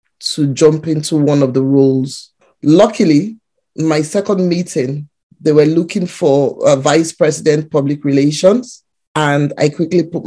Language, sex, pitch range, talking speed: English, male, 150-175 Hz, 140 wpm